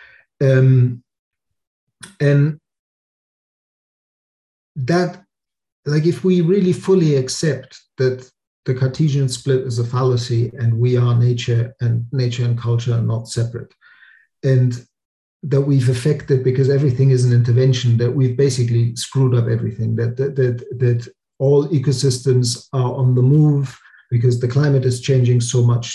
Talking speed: 135 wpm